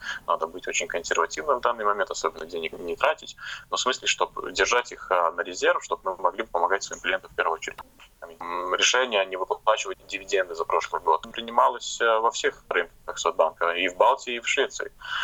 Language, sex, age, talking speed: Russian, male, 20-39, 185 wpm